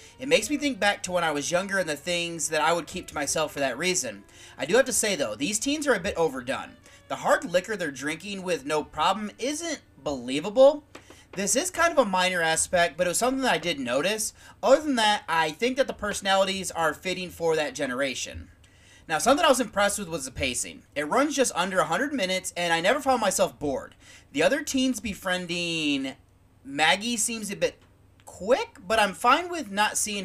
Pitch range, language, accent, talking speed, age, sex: 165-255 Hz, English, American, 215 wpm, 30-49, male